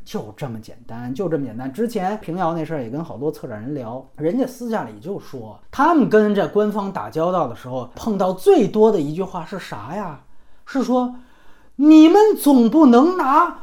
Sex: male